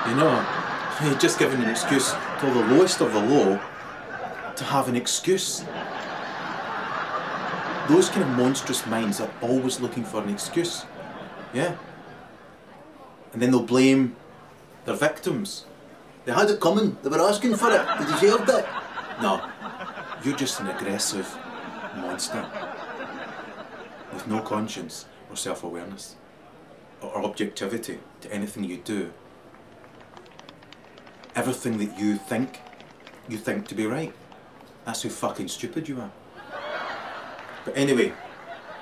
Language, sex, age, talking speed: English, male, 30-49, 125 wpm